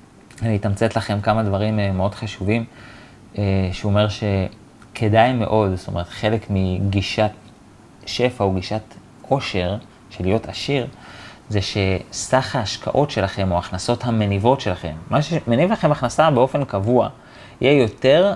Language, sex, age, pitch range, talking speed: Hebrew, male, 30-49, 100-125 Hz, 125 wpm